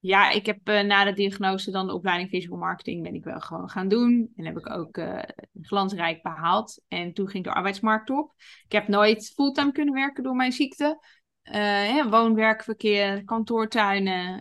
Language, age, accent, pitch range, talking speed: Dutch, 20-39, Dutch, 175-210 Hz, 185 wpm